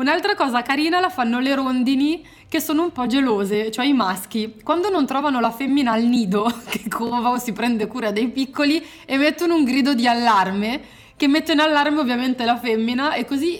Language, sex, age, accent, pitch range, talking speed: Italian, female, 20-39, native, 210-270 Hz, 195 wpm